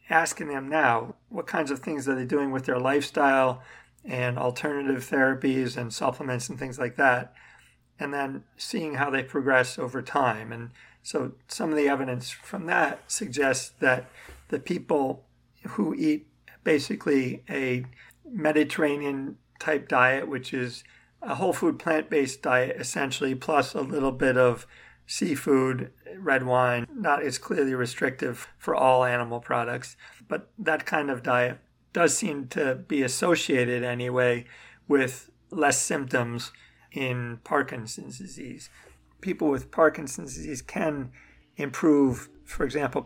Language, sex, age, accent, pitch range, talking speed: English, male, 40-59, American, 125-145 Hz, 135 wpm